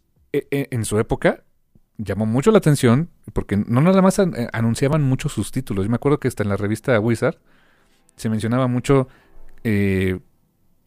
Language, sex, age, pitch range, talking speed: Spanish, male, 40-59, 110-150 Hz, 155 wpm